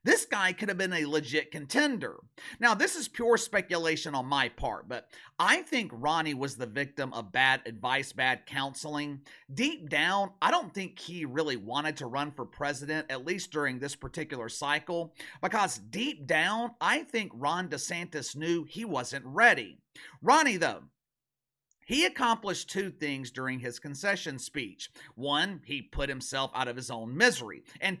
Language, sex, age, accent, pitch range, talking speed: English, male, 40-59, American, 135-195 Hz, 165 wpm